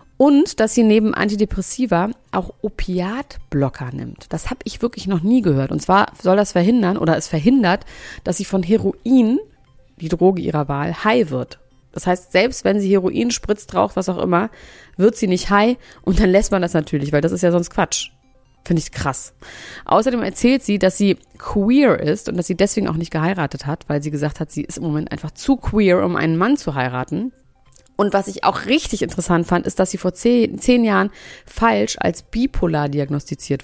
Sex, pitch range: female, 165-220 Hz